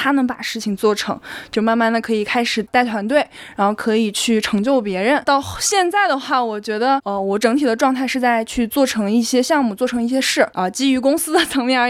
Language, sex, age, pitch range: Chinese, female, 20-39, 225-275 Hz